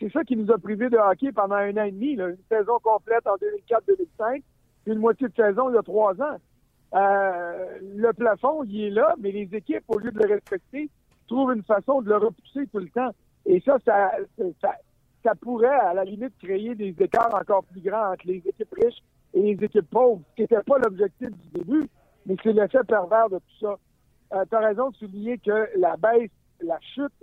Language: French